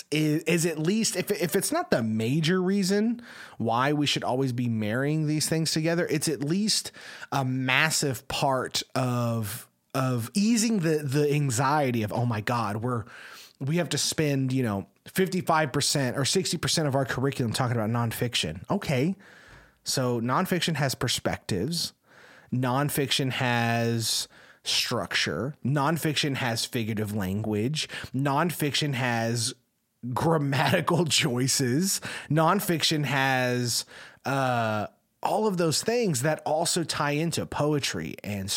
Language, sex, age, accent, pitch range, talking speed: English, male, 30-49, American, 120-160 Hz, 130 wpm